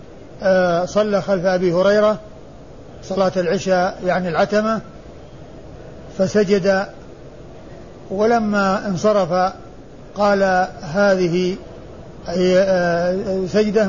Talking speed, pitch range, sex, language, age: 60 wpm, 180-205 Hz, male, Arabic, 50-69